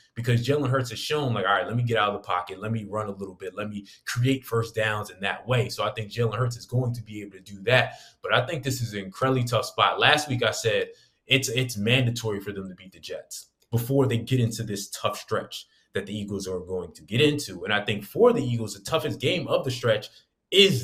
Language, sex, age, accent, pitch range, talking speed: English, male, 20-39, American, 100-130 Hz, 265 wpm